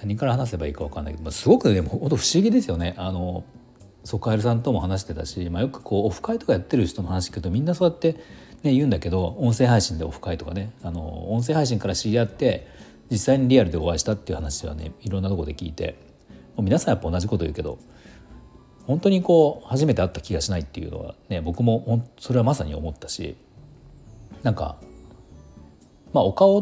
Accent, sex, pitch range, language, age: native, male, 80-120 Hz, Japanese, 40-59